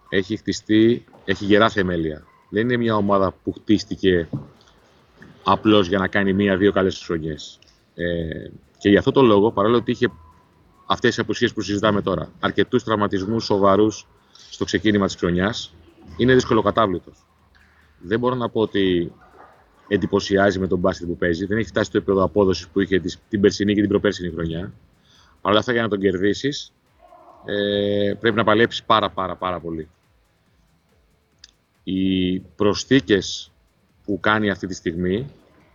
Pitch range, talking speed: 90-110 Hz, 150 wpm